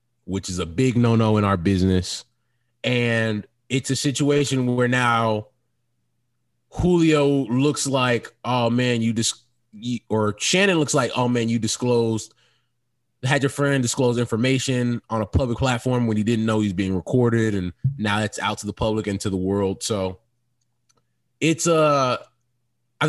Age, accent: 20-39, American